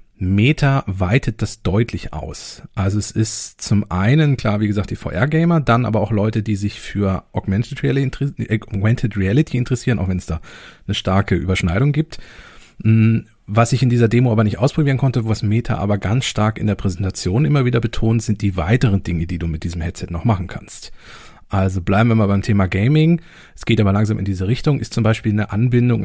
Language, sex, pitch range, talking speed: German, male, 95-125 Hz, 195 wpm